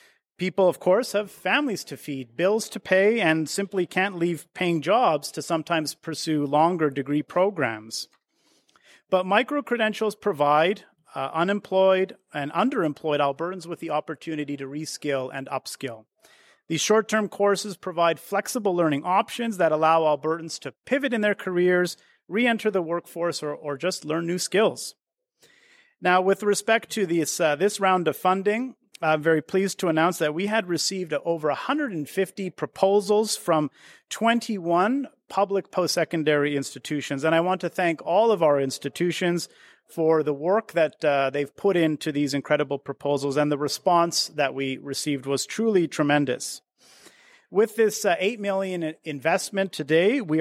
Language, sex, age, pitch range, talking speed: English, male, 40-59, 150-200 Hz, 150 wpm